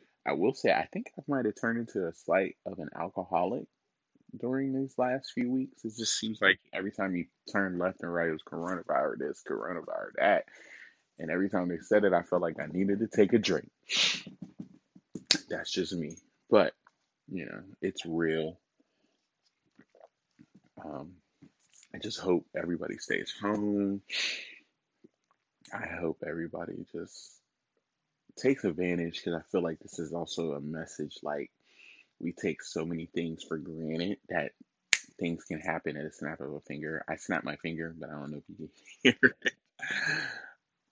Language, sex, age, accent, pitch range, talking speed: English, male, 20-39, American, 80-100 Hz, 165 wpm